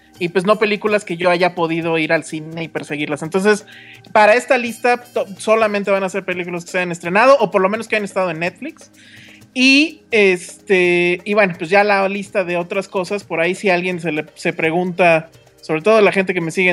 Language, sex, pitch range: Spanish, male, 170-215 Hz